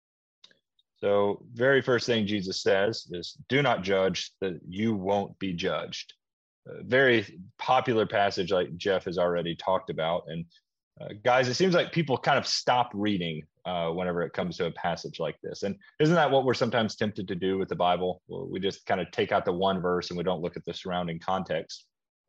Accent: American